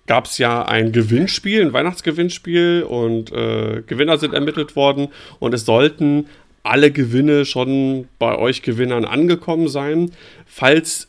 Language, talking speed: German, 135 wpm